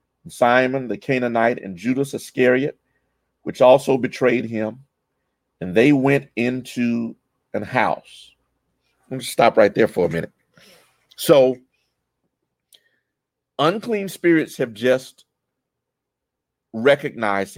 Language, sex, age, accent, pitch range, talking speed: English, male, 50-69, American, 115-155 Hz, 100 wpm